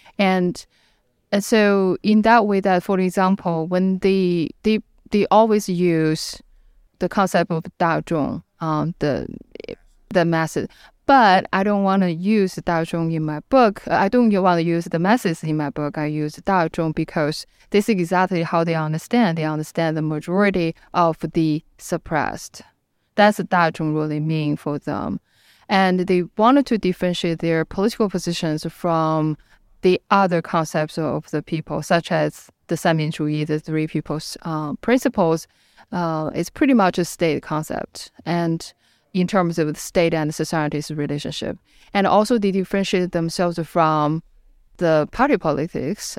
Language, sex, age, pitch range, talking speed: English, female, 20-39, 155-195 Hz, 155 wpm